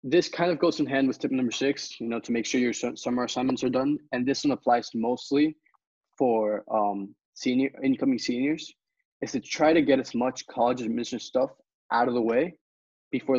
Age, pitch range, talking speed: 20-39, 115-145 Hz, 200 wpm